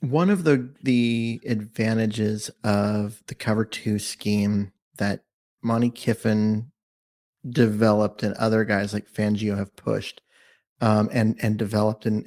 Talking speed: 125 wpm